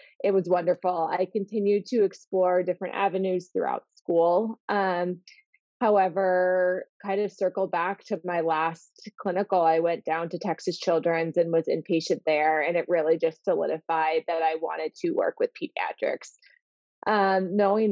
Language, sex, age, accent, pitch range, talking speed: English, female, 20-39, American, 170-200 Hz, 150 wpm